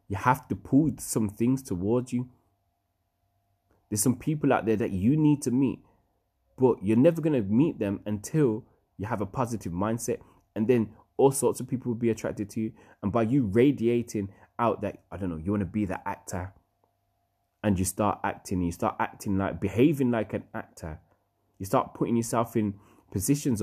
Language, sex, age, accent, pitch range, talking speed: English, male, 20-39, British, 90-115 Hz, 190 wpm